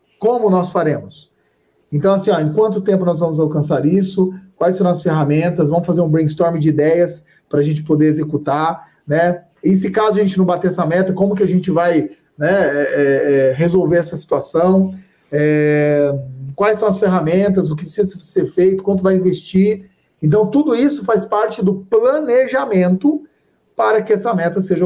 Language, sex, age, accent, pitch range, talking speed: Portuguese, male, 40-59, Brazilian, 170-210 Hz, 170 wpm